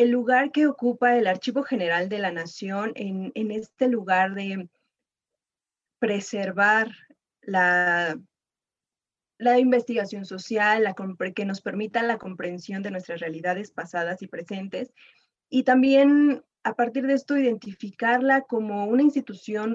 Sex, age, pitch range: female, 20-39, 185-235 Hz